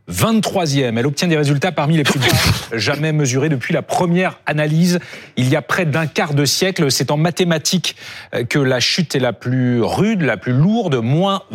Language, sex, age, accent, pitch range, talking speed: French, male, 40-59, French, 130-175 Hz, 190 wpm